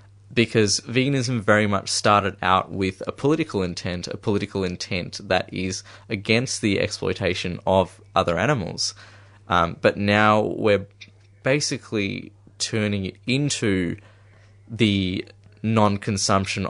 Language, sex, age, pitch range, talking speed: English, male, 20-39, 95-105 Hz, 110 wpm